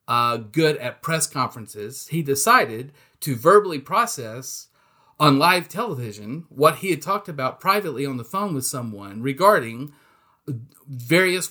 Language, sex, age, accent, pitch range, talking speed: English, male, 40-59, American, 130-165 Hz, 135 wpm